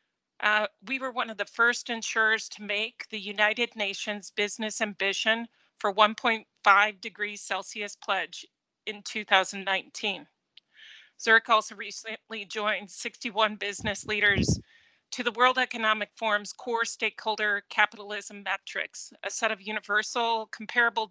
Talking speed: 120 wpm